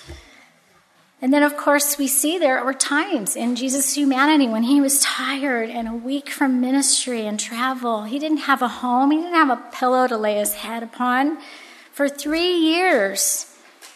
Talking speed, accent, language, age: 170 wpm, American, English, 40-59